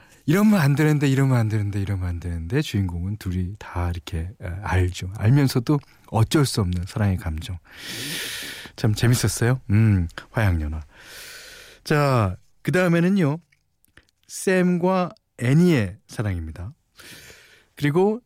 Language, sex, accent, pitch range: Korean, male, native, 95-160 Hz